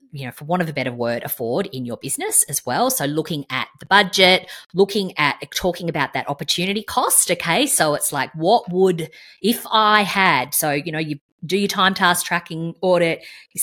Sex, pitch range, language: female, 145-185 Hz, English